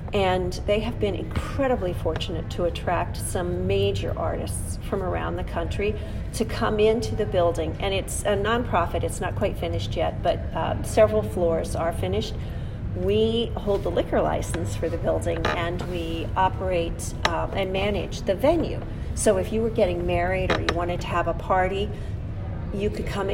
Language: English